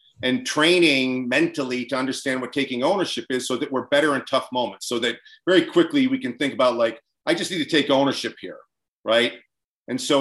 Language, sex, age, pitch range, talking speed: English, male, 40-59, 140-185 Hz, 205 wpm